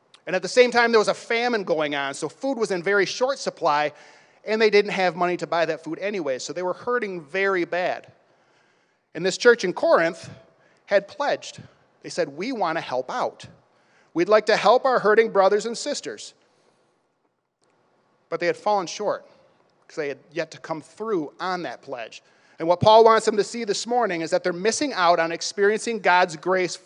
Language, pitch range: English, 160-210 Hz